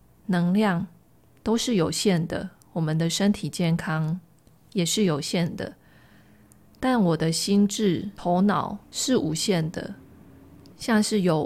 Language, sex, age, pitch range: Chinese, female, 20-39, 170-210 Hz